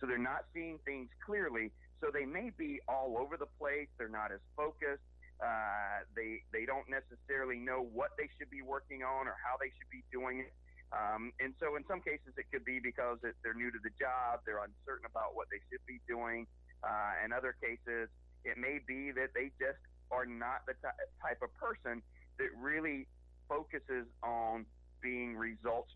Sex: male